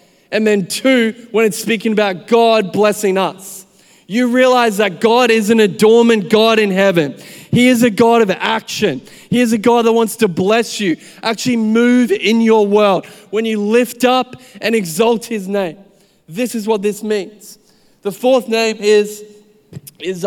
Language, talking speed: English, 170 wpm